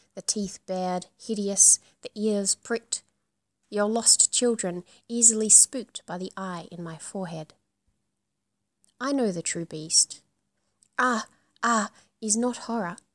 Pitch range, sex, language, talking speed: 175-225 Hz, female, English, 130 wpm